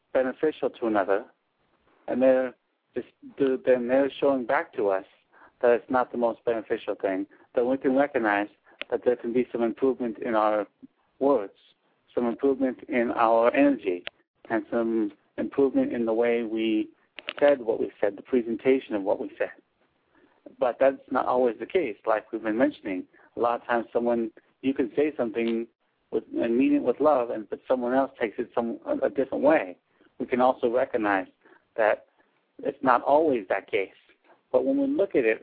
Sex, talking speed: male, 180 wpm